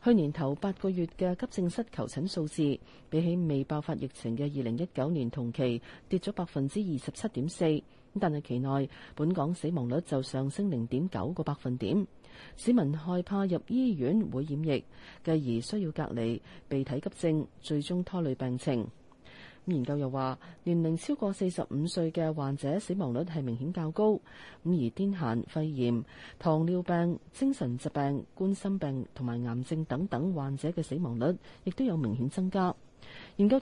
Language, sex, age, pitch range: Chinese, female, 40-59, 130-180 Hz